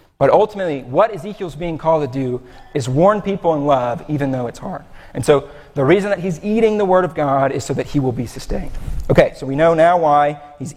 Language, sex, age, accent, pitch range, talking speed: English, male, 40-59, American, 135-165 Hz, 235 wpm